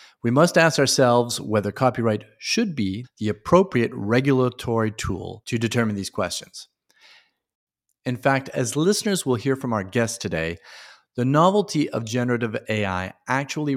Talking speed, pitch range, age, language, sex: 140 wpm, 105-135 Hz, 40-59, English, male